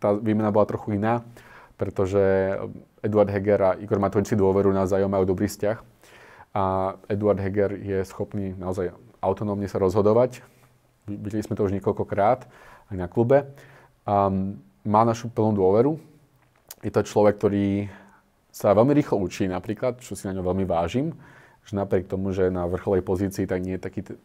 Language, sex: Slovak, male